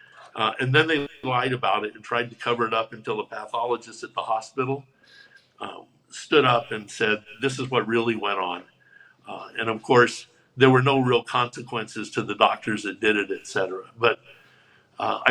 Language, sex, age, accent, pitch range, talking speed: English, male, 60-79, American, 115-135 Hz, 190 wpm